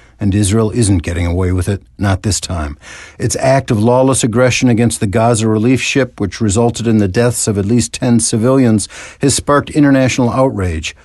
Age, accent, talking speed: 50-69, American, 185 wpm